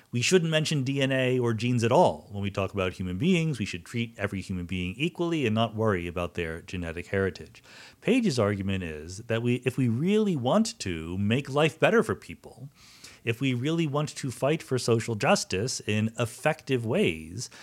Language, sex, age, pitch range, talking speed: English, male, 40-59, 100-140 Hz, 185 wpm